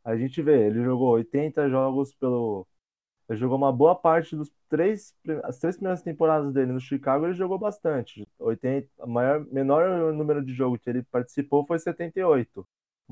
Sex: male